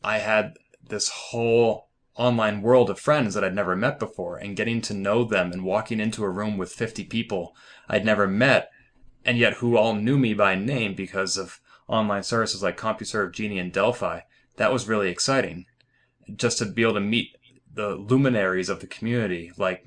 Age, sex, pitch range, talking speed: 20-39, male, 95-120 Hz, 185 wpm